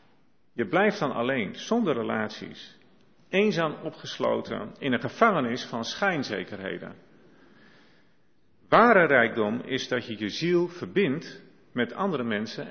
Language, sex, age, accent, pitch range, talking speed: Dutch, male, 40-59, Dutch, 120-190 Hz, 115 wpm